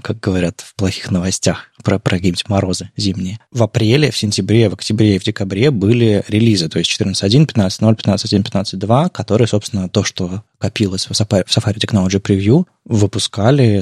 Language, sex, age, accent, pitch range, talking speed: Russian, male, 20-39, native, 95-115 Hz, 160 wpm